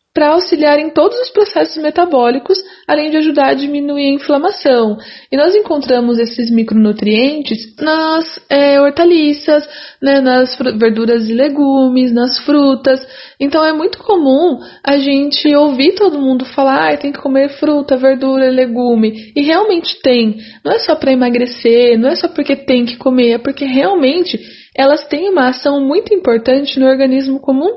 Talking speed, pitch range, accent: 160 wpm, 250-310 Hz, Brazilian